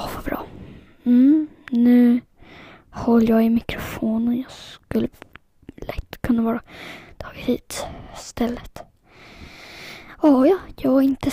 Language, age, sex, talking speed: Swedish, 20-39, female, 105 wpm